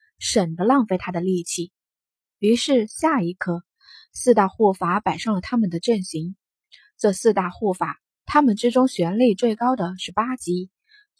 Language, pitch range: Chinese, 185-260 Hz